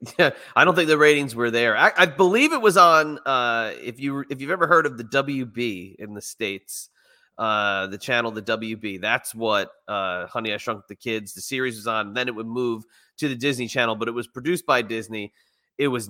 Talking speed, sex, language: 235 wpm, male, English